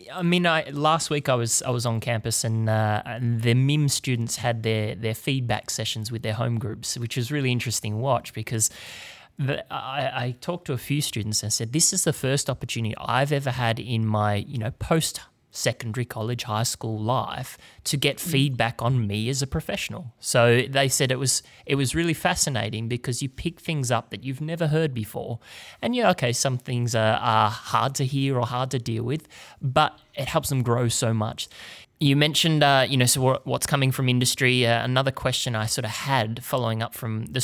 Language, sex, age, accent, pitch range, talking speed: English, male, 30-49, Australian, 115-135 Hz, 210 wpm